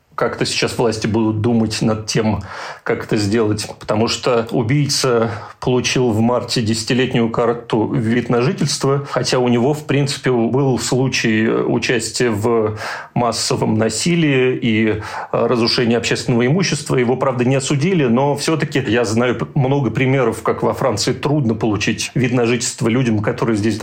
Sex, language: male, Russian